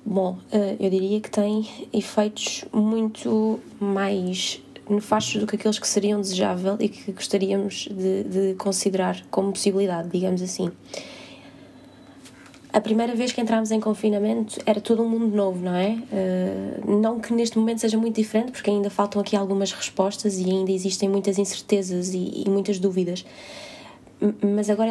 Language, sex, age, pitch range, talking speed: Portuguese, female, 20-39, 195-220 Hz, 150 wpm